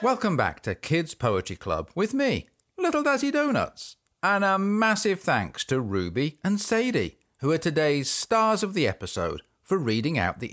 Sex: male